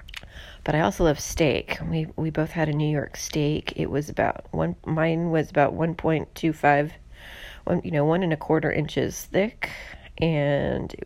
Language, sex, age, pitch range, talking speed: English, female, 30-49, 145-170 Hz, 175 wpm